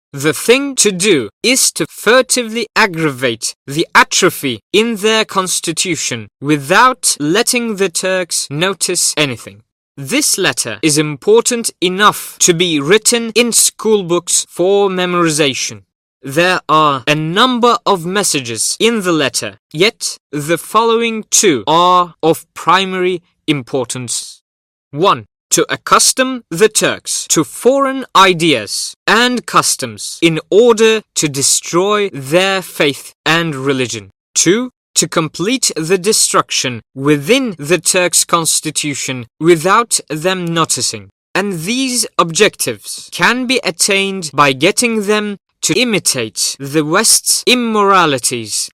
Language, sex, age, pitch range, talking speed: English, male, 20-39, 145-215 Hz, 115 wpm